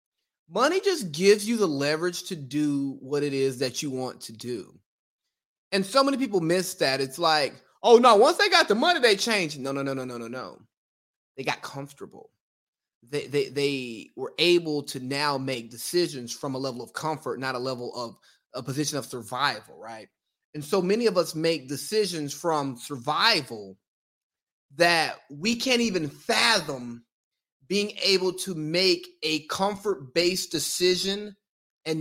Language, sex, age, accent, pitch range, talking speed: English, male, 20-39, American, 135-190 Hz, 165 wpm